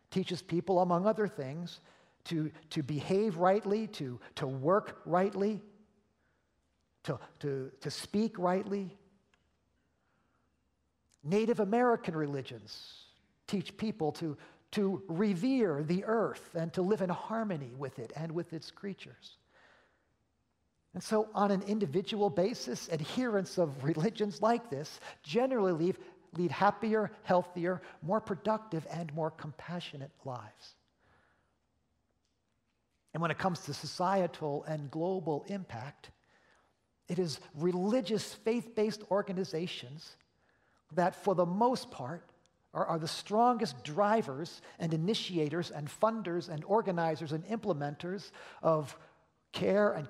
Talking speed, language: 115 wpm, English